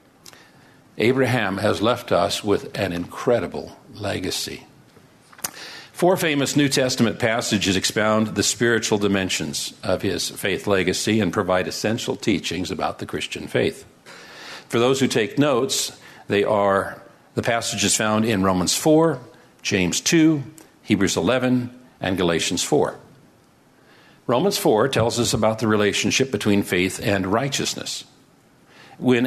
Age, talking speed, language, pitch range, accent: 50-69, 125 wpm, English, 100-125 Hz, American